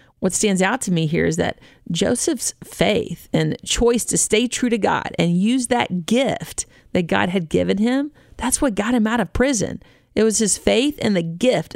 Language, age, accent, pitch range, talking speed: English, 40-59, American, 190-245 Hz, 205 wpm